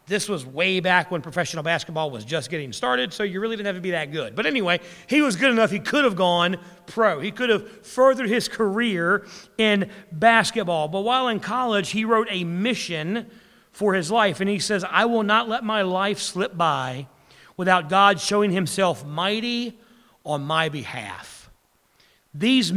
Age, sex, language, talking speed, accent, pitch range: 40-59, male, English, 185 wpm, American, 155-210 Hz